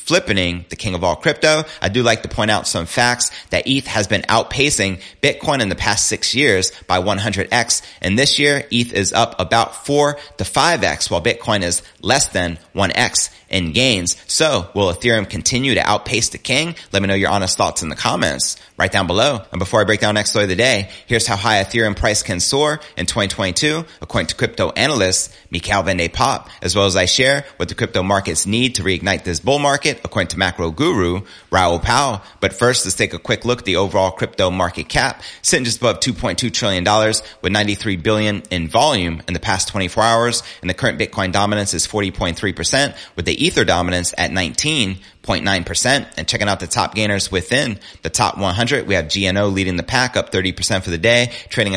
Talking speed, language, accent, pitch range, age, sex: 205 wpm, English, American, 90-115 Hz, 30-49, male